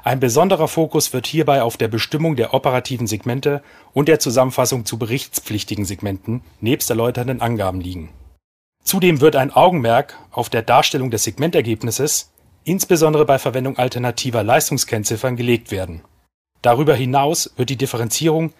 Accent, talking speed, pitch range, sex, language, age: German, 135 wpm, 115-145 Hz, male, German, 40-59